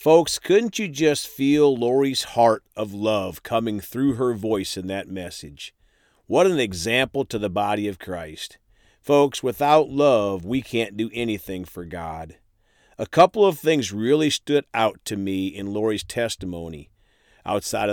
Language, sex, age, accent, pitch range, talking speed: English, male, 40-59, American, 100-140 Hz, 155 wpm